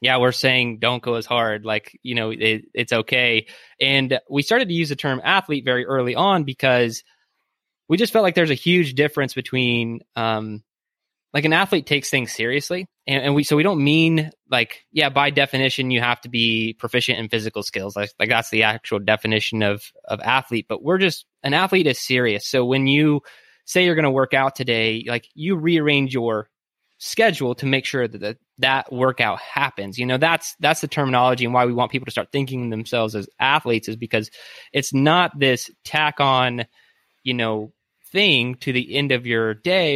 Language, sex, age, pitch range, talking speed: English, male, 20-39, 115-145 Hz, 200 wpm